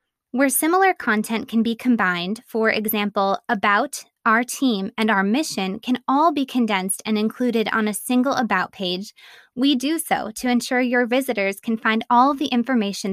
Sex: female